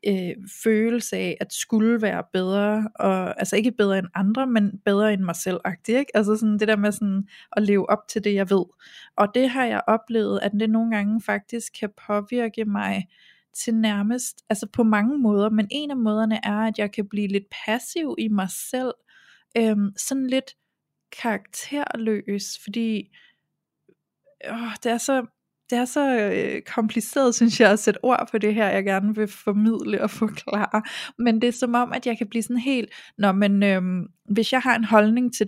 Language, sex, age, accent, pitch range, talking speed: Danish, female, 20-39, native, 205-240 Hz, 185 wpm